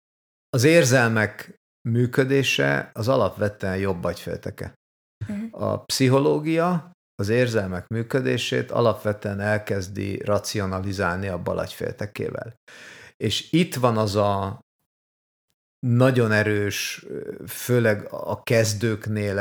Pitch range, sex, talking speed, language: 105-115 Hz, male, 85 wpm, Hungarian